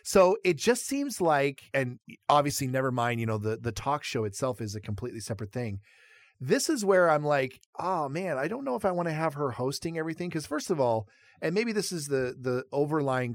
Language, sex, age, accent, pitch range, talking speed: English, male, 40-59, American, 115-150 Hz, 225 wpm